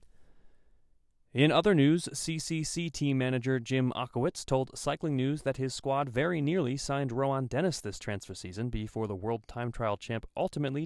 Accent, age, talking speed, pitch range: American, 30-49, 160 wpm, 110-150 Hz